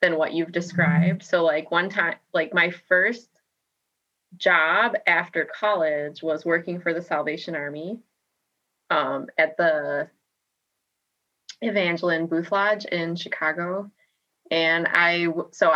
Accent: American